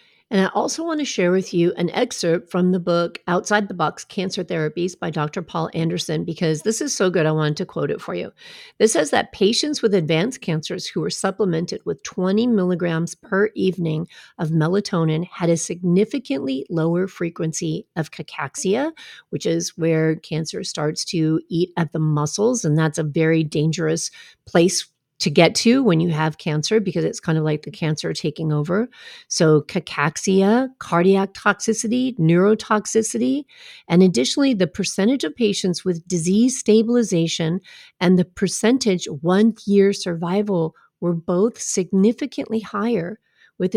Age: 40-59